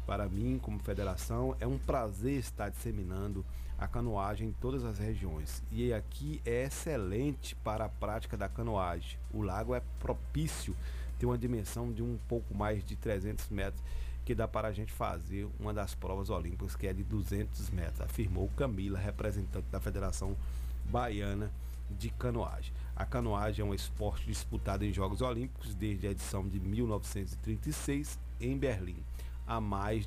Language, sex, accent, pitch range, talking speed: Portuguese, male, Brazilian, 70-115 Hz, 160 wpm